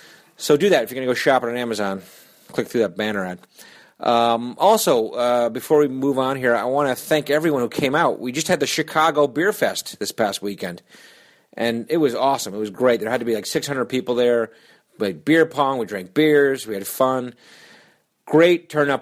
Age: 40-59